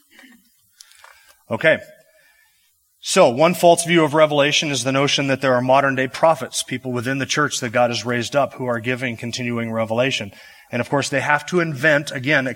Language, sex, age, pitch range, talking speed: English, male, 30-49, 135-185 Hz, 180 wpm